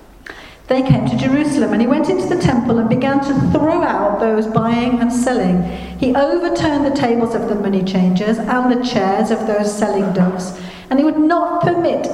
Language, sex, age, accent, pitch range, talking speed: English, female, 50-69, British, 200-280 Hz, 195 wpm